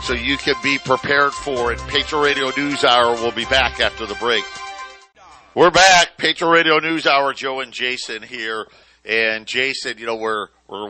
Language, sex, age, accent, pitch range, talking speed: English, male, 50-69, American, 115-140 Hz, 180 wpm